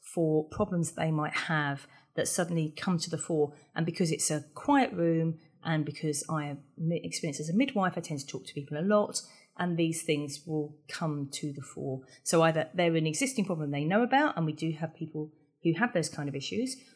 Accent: British